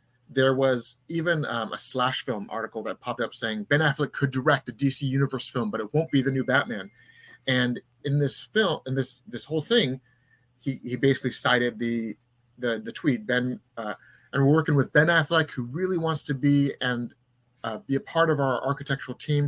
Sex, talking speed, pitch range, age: male, 205 wpm, 120-145 Hz, 30-49